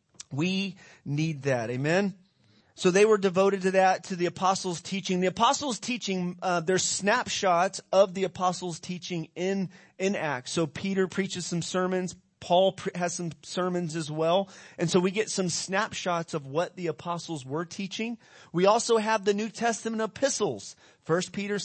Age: 30-49